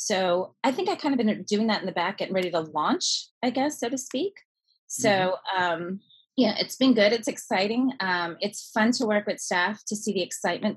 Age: 30-49